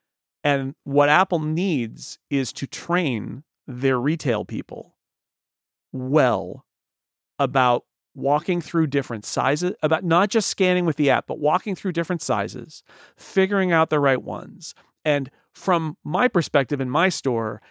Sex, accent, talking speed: male, American, 135 wpm